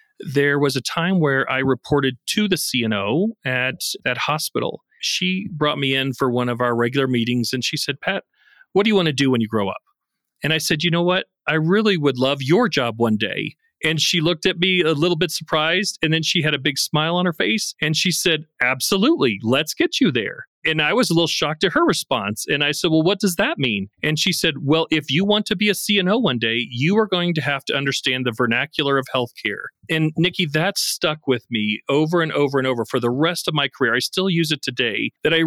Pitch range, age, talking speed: 135-180 Hz, 40-59, 240 wpm